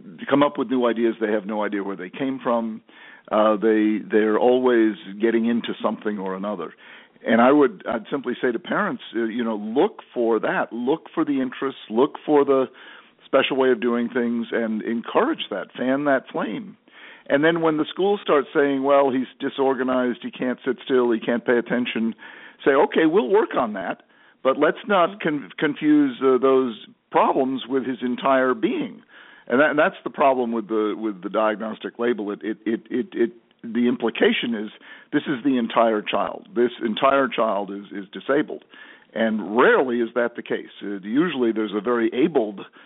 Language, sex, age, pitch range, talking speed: English, male, 50-69, 110-135 Hz, 185 wpm